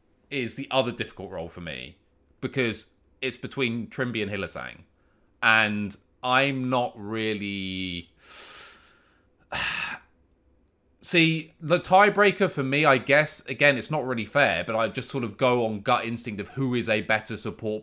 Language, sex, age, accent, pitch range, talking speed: English, male, 30-49, British, 90-110 Hz, 150 wpm